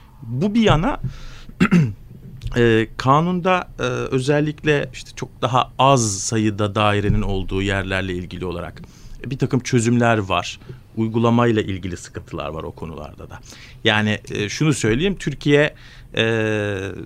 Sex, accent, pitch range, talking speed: male, native, 105-135 Hz, 125 wpm